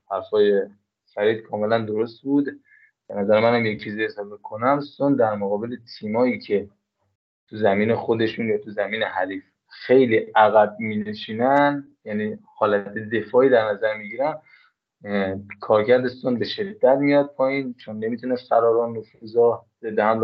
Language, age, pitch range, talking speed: Persian, 20-39, 105-135 Hz, 130 wpm